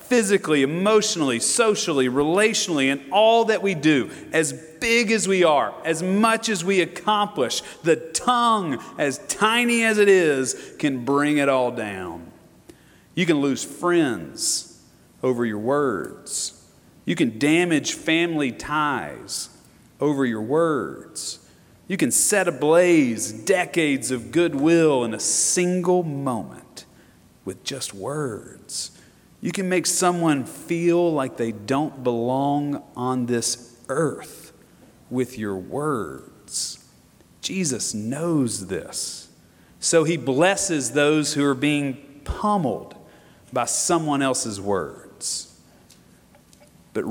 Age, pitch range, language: 40-59, 125-180 Hz, English